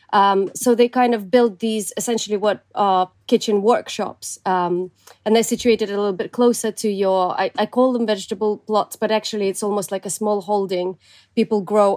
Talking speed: 195 wpm